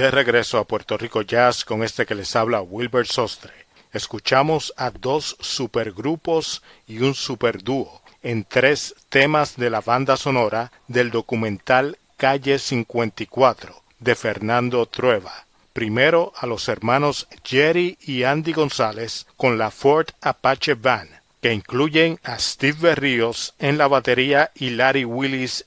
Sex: male